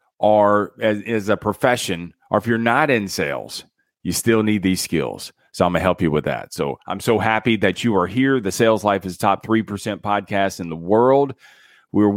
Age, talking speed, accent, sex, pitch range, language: 40-59, 210 wpm, American, male, 95-120 Hz, English